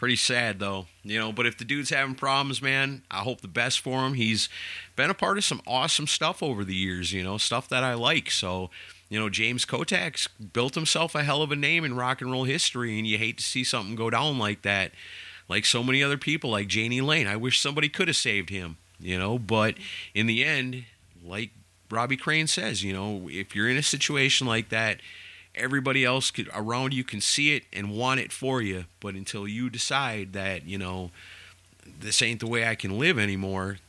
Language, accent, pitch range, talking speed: English, American, 100-140 Hz, 220 wpm